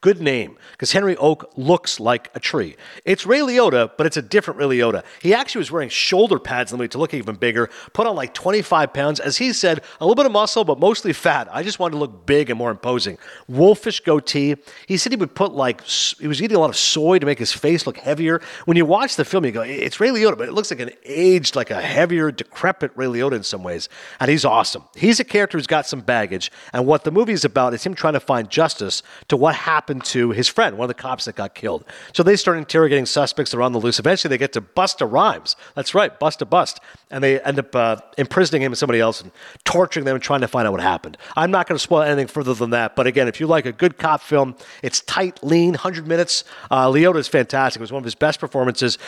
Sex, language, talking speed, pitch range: male, English, 260 wpm, 125-175 Hz